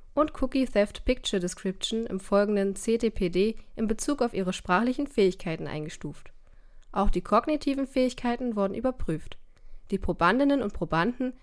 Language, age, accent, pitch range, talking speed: German, 20-39, German, 180-245 Hz, 130 wpm